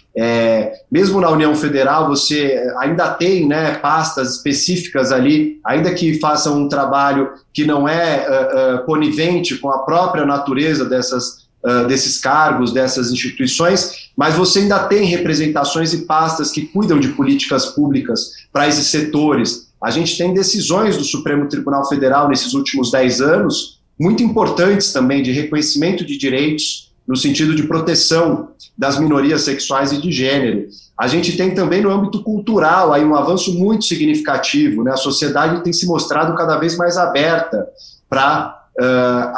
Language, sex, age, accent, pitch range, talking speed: Portuguese, male, 30-49, Brazilian, 130-170 Hz, 145 wpm